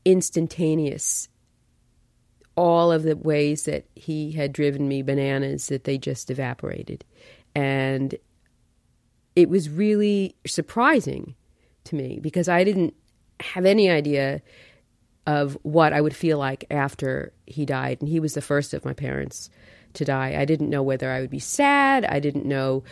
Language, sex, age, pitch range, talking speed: English, female, 40-59, 135-175 Hz, 150 wpm